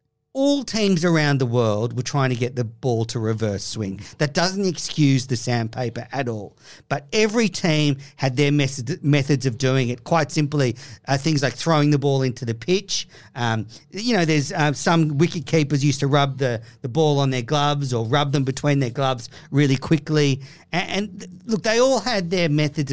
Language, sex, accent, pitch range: English, male, Australian, 130-165 Hz